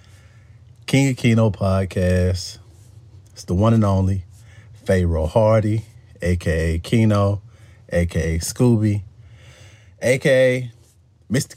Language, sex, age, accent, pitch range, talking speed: English, male, 40-59, American, 90-110 Hz, 90 wpm